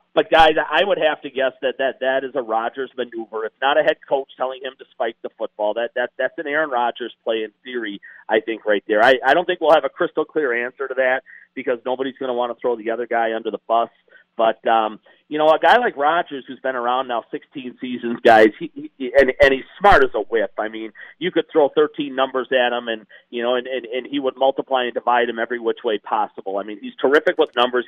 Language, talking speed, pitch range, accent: English, 255 wpm, 120-155 Hz, American